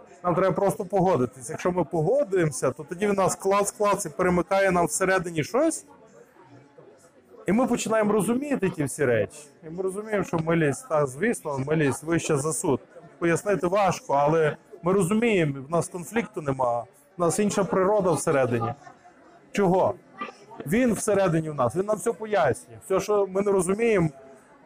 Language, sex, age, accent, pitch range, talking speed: Ukrainian, male, 20-39, native, 170-215 Hz, 155 wpm